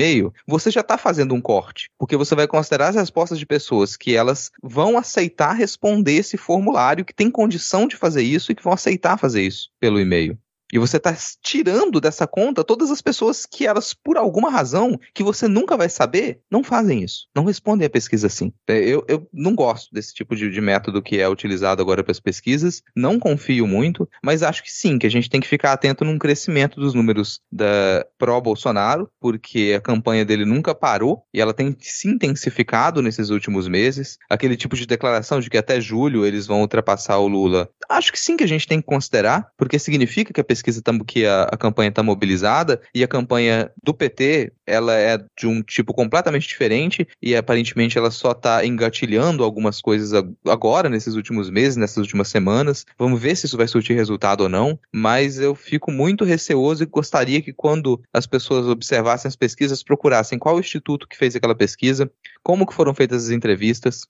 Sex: male